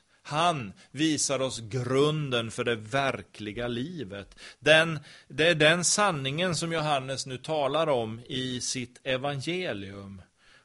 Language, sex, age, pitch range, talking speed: Swedish, male, 40-59, 110-150 Hz, 115 wpm